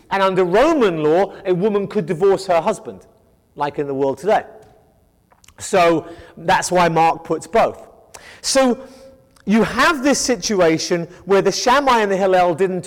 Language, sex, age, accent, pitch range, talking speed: English, male, 30-49, British, 185-250 Hz, 155 wpm